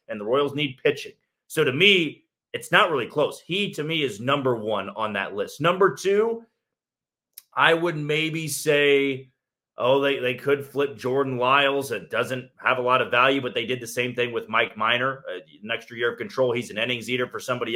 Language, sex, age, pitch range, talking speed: English, male, 30-49, 120-155 Hz, 205 wpm